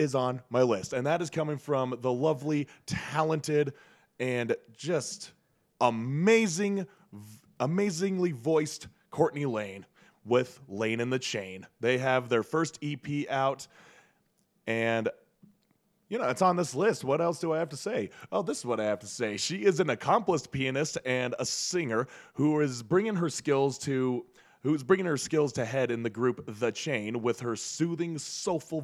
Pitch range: 120-155 Hz